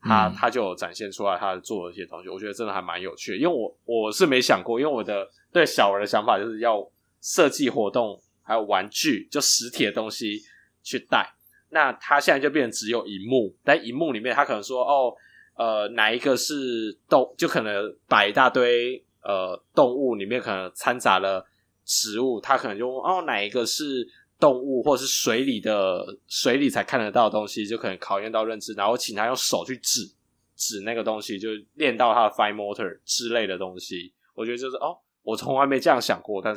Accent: native